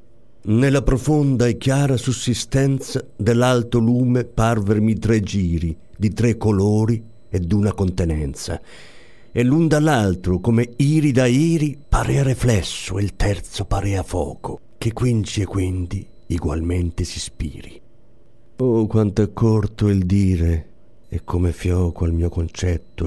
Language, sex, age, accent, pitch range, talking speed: Italian, male, 50-69, native, 90-120 Hz, 125 wpm